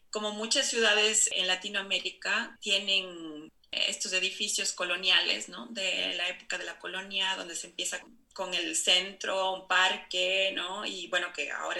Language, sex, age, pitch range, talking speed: Spanish, female, 30-49, 175-200 Hz, 145 wpm